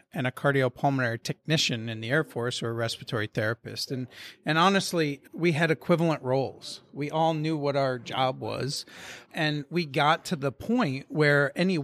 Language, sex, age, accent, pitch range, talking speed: English, male, 40-59, American, 125-155 Hz, 170 wpm